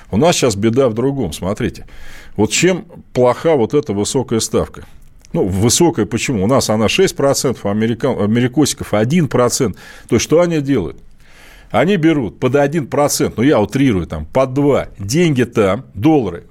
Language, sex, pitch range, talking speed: Russian, male, 120-160 Hz, 155 wpm